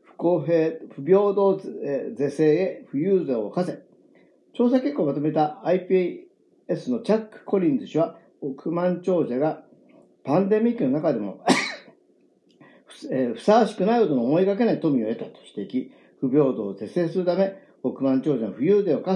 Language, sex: Japanese, male